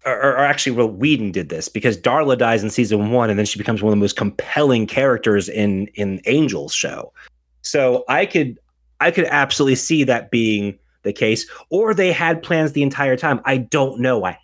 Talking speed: 205 wpm